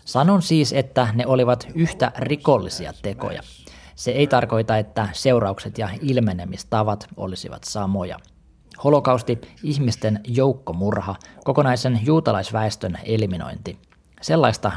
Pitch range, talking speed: 105-130 Hz, 100 wpm